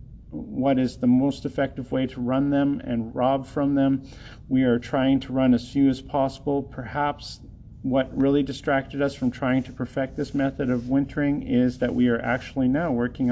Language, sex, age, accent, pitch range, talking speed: English, male, 40-59, American, 120-140 Hz, 190 wpm